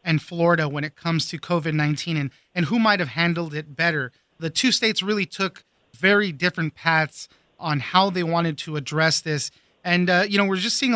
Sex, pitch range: male, 155-190 Hz